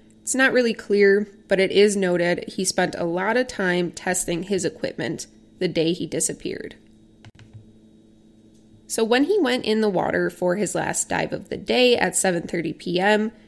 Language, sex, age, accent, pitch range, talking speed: English, female, 20-39, American, 165-215 Hz, 175 wpm